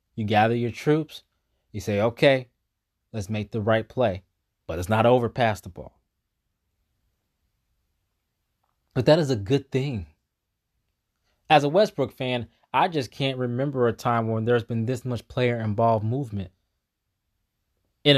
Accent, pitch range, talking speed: American, 100-135 Hz, 140 wpm